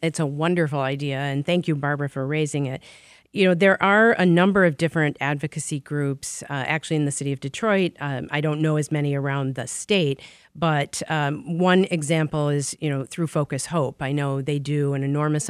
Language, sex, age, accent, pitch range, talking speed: English, female, 40-59, American, 140-165 Hz, 205 wpm